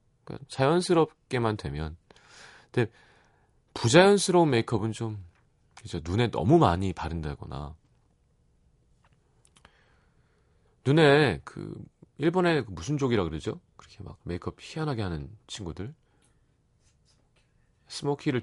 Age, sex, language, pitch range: 40-59, male, Korean, 95-165 Hz